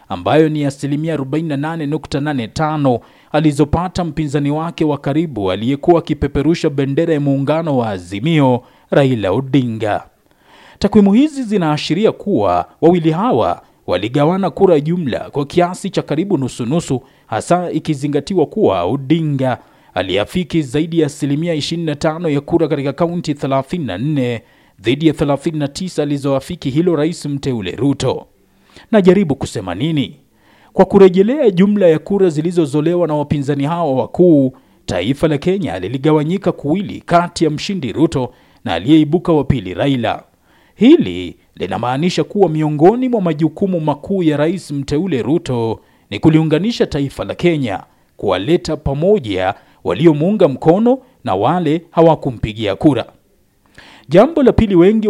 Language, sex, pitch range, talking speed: Swahili, male, 140-170 Hz, 120 wpm